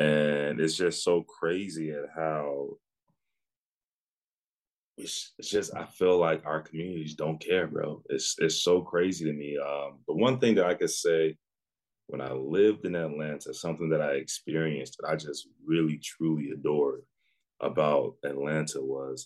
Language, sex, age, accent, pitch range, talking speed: English, male, 30-49, American, 75-85 Hz, 155 wpm